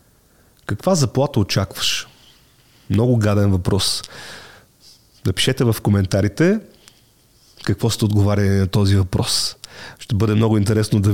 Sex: male